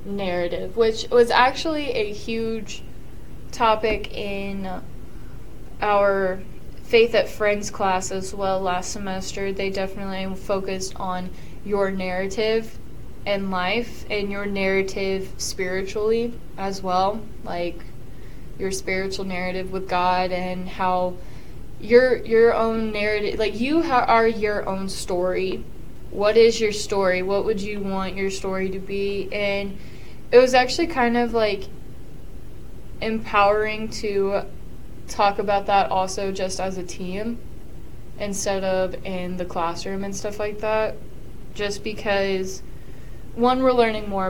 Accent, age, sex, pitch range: American, 20-39, female, 190-220 Hz